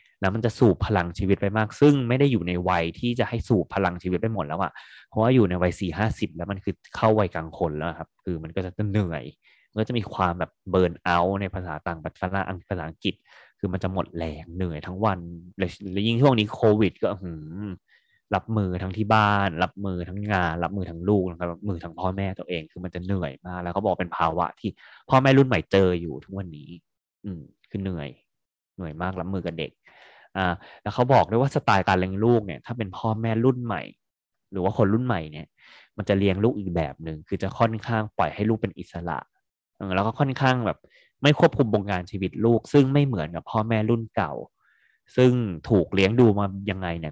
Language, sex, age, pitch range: Thai, male, 20-39, 90-110 Hz